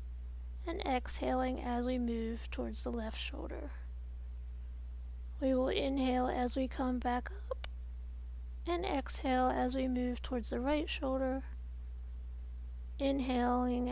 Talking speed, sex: 115 wpm, female